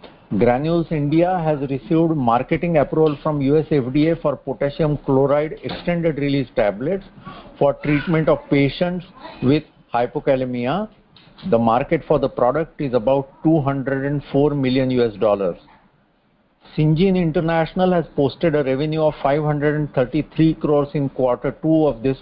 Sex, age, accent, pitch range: male, 50-69, Indian, 140-165 Hz